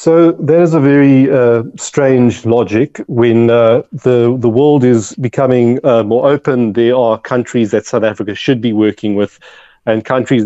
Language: English